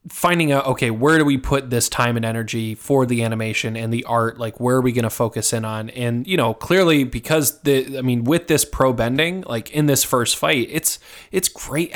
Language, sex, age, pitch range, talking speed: English, male, 20-39, 115-135 Hz, 230 wpm